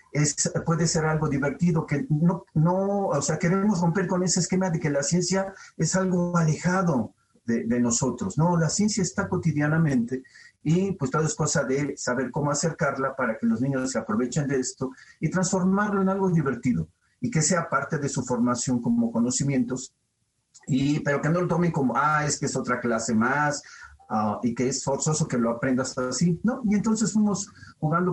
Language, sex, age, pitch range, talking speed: Spanish, male, 50-69, 130-175 Hz, 190 wpm